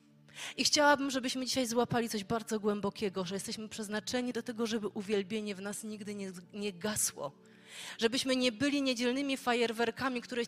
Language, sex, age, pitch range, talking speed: Polish, female, 30-49, 185-235 Hz, 155 wpm